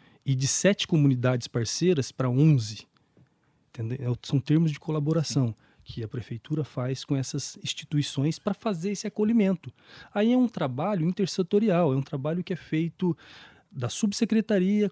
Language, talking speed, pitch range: Portuguese, 140 wpm, 125-170 Hz